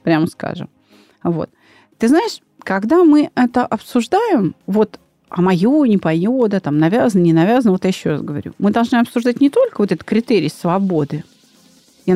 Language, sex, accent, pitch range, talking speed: Russian, female, native, 185-250 Hz, 170 wpm